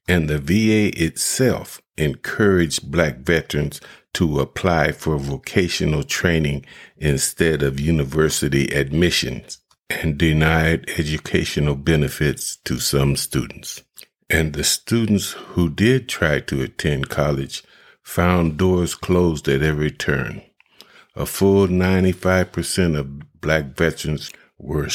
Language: English